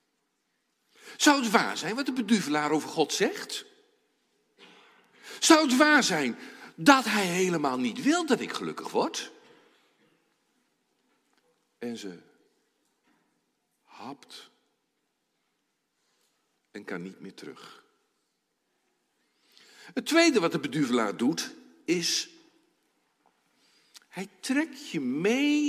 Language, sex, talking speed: Dutch, male, 100 wpm